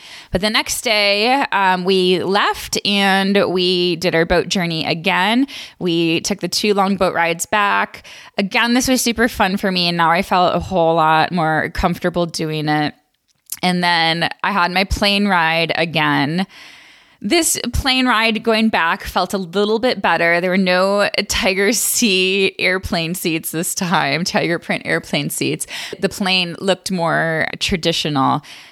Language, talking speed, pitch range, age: English, 160 wpm, 165-200 Hz, 20-39